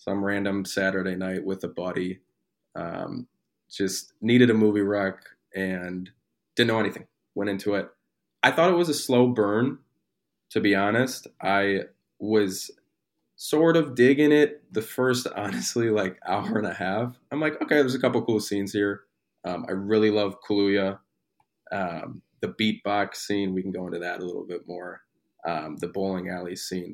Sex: male